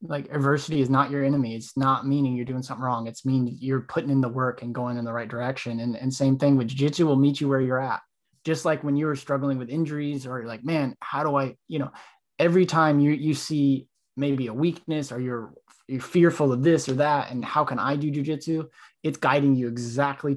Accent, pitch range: American, 125-140 Hz